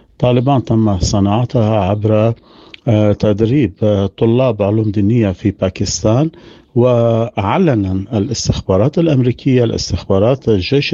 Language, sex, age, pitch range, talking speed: Arabic, male, 50-69, 105-130 Hz, 80 wpm